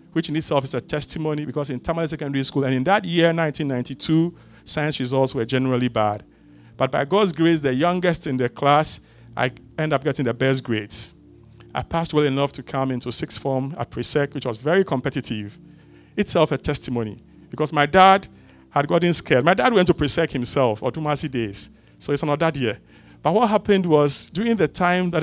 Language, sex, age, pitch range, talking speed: English, male, 50-69, 125-160 Hz, 195 wpm